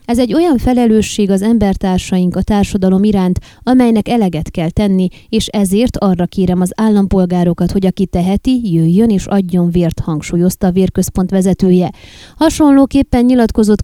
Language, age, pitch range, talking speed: Hungarian, 20-39, 180-225 Hz, 140 wpm